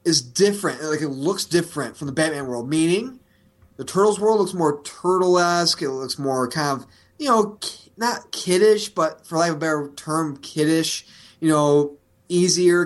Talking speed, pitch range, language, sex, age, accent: 175 wpm, 135-175 Hz, English, male, 20-39, American